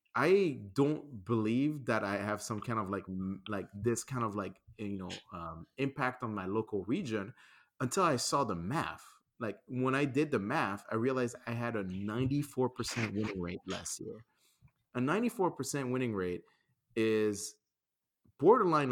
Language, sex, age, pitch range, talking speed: English, male, 30-49, 100-130 Hz, 160 wpm